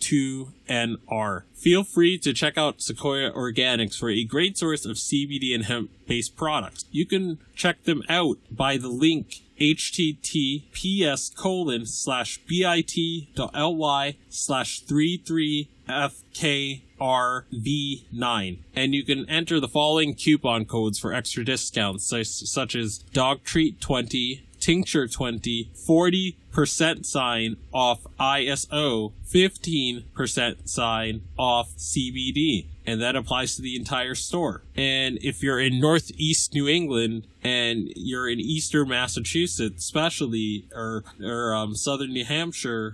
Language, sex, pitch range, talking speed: English, male, 115-150 Hz, 115 wpm